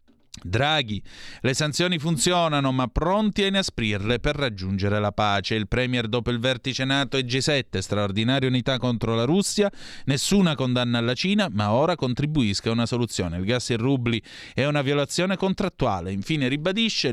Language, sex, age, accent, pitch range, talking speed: Italian, male, 30-49, native, 115-150 Hz, 160 wpm